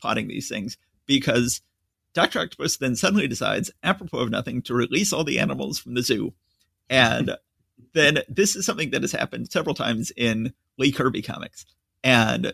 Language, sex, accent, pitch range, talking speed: English, male, American, 95-160 Hz, 165 wpm